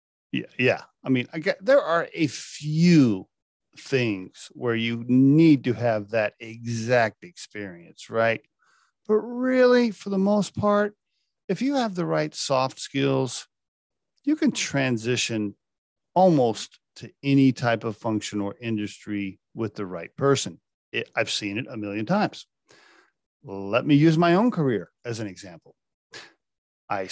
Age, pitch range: 40-59, 115-160 Hz